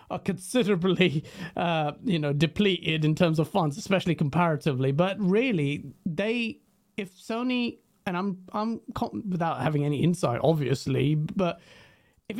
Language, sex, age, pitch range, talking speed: English, male, 30-49, 150-210 Hz, 130 wpm